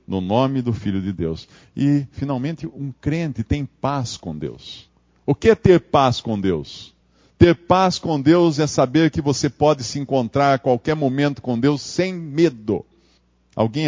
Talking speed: 175 wpm